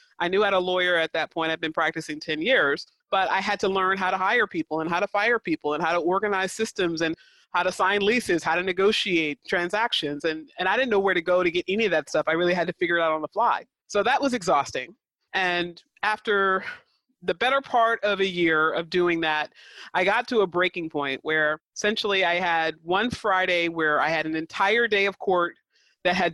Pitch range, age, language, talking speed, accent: 165-200 Hz, 30-49, English, 235 wpm, American